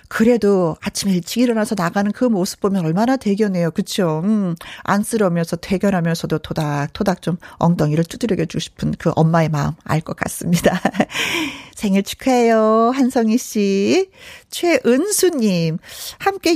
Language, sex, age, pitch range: Korean, female, 40-59, 185-255 Hz